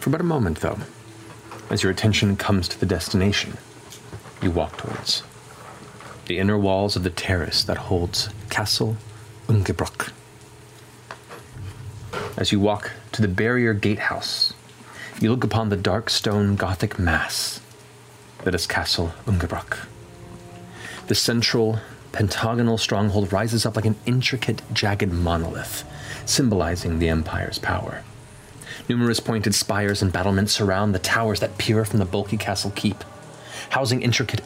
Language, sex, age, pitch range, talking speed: English, male, 30-49, 100-115 Hz, 130 wpm